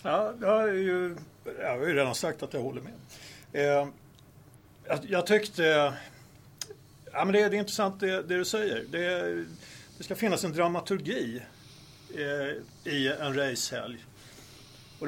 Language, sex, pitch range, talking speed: Swedish, male, 140-180 Hz, 145 wpm